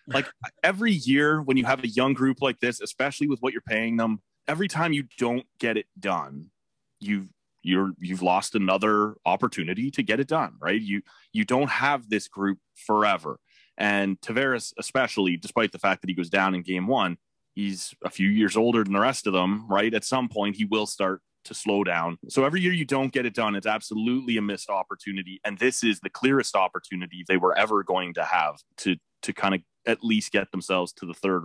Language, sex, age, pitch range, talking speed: English, male, 30-49, 95-130 Hz, 210 wpm